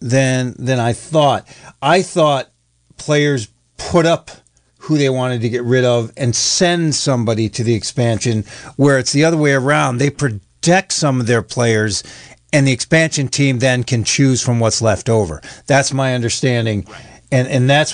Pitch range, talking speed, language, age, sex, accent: 120-145 Hz, 170 wpm, English, 50-69, male, American